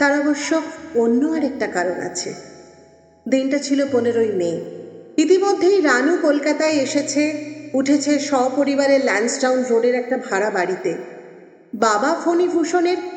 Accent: native